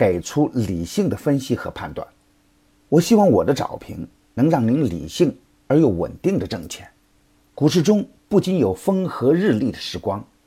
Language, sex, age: Chinese, male, 50-69